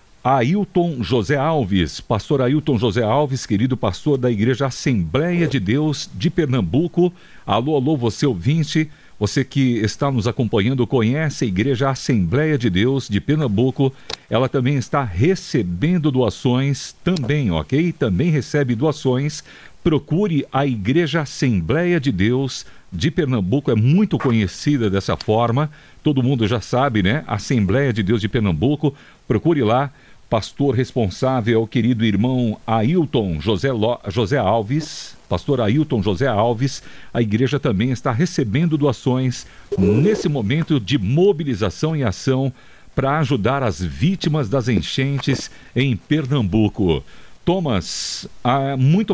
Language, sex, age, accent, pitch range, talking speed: Portuguese, male, 60-79, Brazilian, 120-150 Hz, 125 wpm